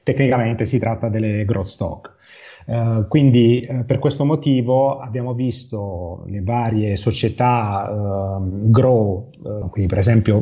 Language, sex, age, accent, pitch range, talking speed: Italian, male, 30-49, native, 105-130 Hz, 130 wpm